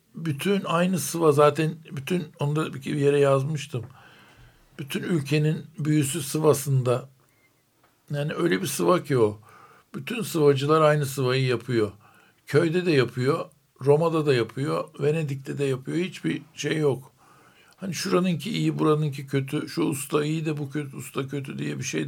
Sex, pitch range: male, 135-155 Hz